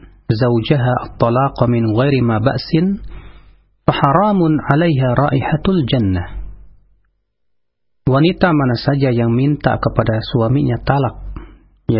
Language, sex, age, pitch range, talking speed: Indonesian, male, 40-59, 110-150 Hz, 90 wpm